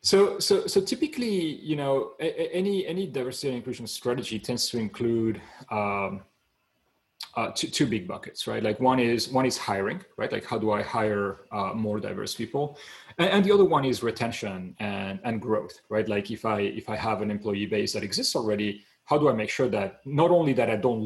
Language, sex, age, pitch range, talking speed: English, male, 30-49, 105-145 Hz, 210 wpm